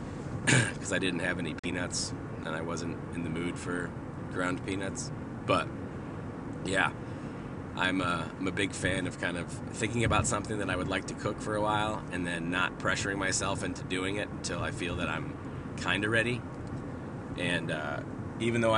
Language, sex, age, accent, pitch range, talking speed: English, male, 30-49, American, 90-115 Hz, 180 wpm